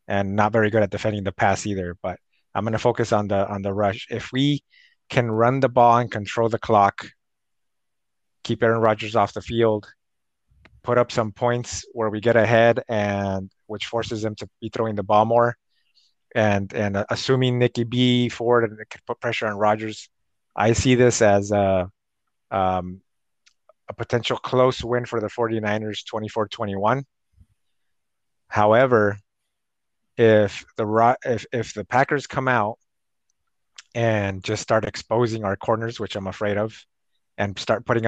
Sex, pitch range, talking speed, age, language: male, 100-120 Hz, 160 wpm, 30-49, English